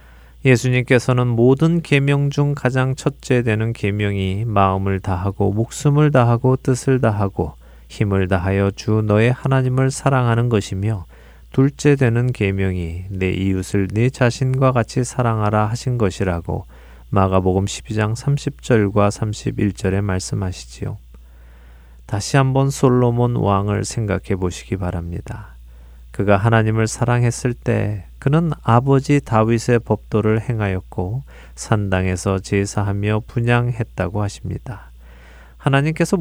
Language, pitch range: Korean, 95-125 Hz